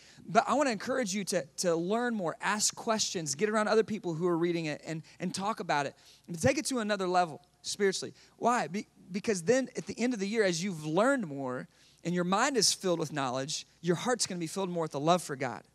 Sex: male